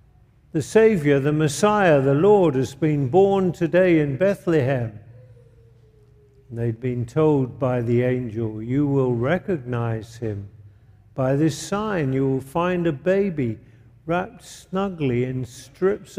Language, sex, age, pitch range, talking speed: English, male, 50-69, 120-190 Hz, 125 wpm